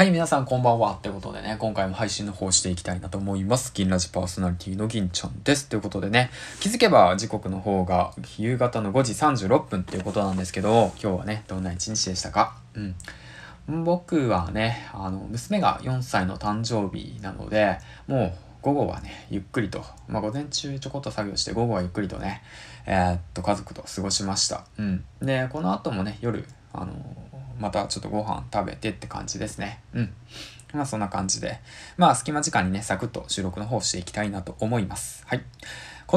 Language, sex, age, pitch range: Japanese, male, 20-39, 95-120 Hz